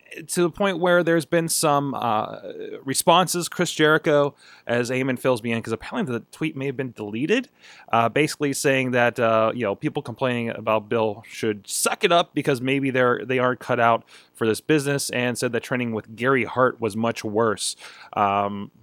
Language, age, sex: English, 20-39, male